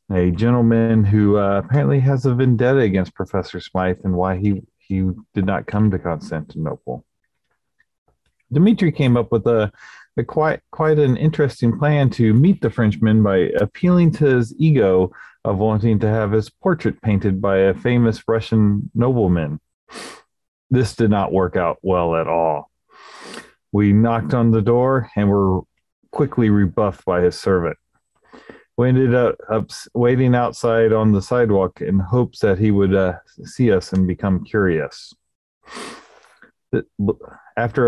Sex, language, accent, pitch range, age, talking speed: male, English, American, 95-125 Hz, 40-59, 145 wpm